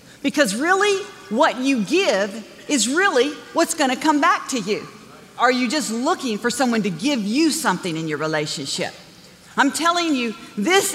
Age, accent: 50-69, American